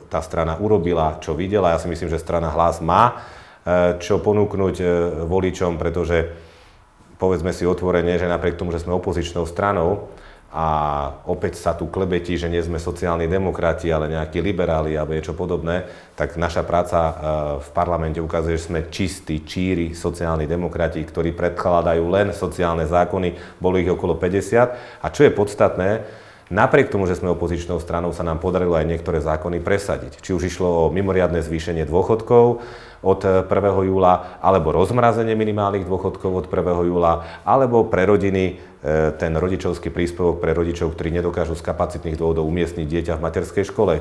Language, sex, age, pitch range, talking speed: Slovak, male, 30-49, 85-95 Hz, 160 wpm